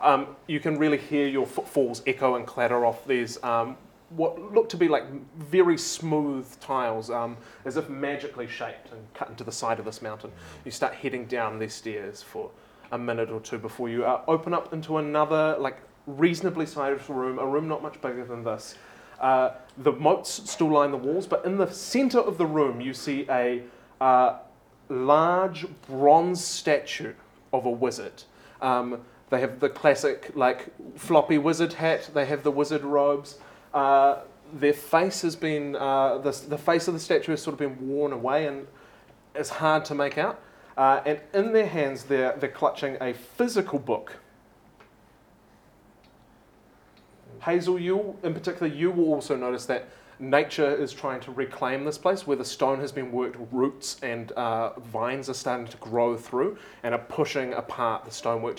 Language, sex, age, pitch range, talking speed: English, male, 30-49, 130-155 Hz, 175 wpm